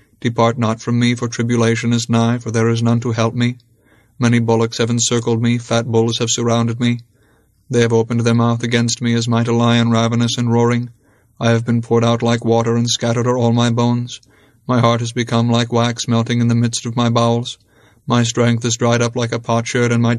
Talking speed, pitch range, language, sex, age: 225 wpm, 115-120 Hz, English, male, 30-49